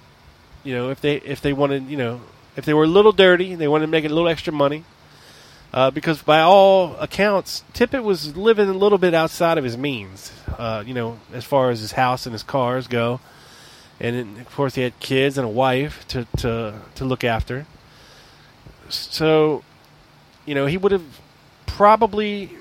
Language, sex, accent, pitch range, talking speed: English, male, American, 120-170 Hz, 190 wpm